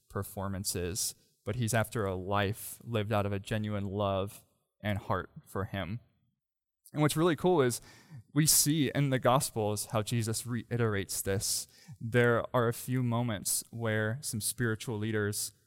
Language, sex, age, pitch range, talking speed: English, male, 20-39, 100-120 Hz, 150 wpm